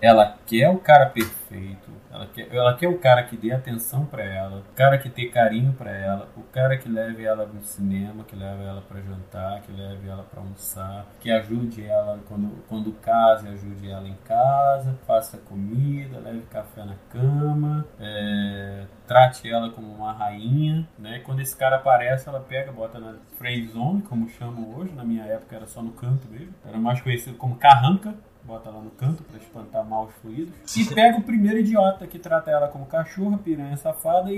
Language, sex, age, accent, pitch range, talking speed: Portuguese, male, 20-39, Brazilian, 110-160 Hz, 190 wpm